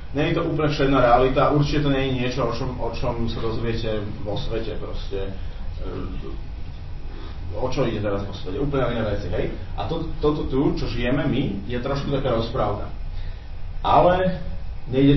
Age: 30-49